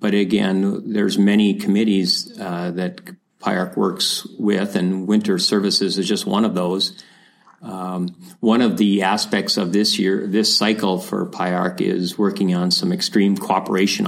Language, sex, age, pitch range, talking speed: English, male, 40-59, 95-105 Hz, 155 wpm